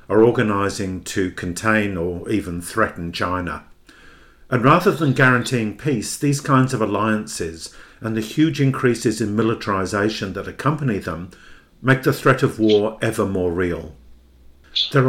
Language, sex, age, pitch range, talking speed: English, male, 50-69, 95-125 Hz, 140 wpm